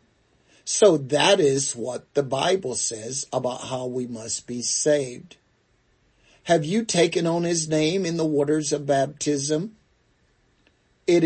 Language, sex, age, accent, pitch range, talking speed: English, male, 50-69, American, 130-175 Hz, 135 wpm